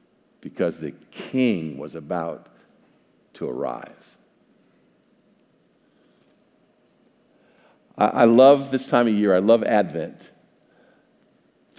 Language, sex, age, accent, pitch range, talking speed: English, male, 50-69, American, 105-140 Hz, 85 wpm